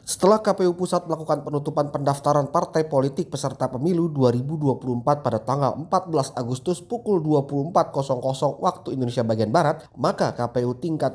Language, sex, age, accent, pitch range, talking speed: Indonesian, male, 30-49, native, 125-160 Hz, 130 wpm